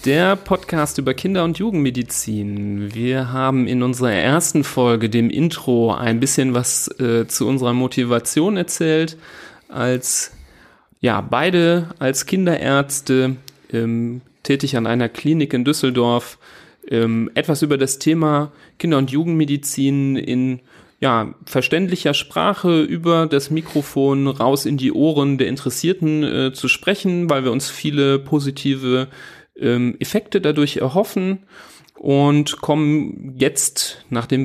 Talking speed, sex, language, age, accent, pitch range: 120 wpm, male, German, 30-49, German, 120-150 Hz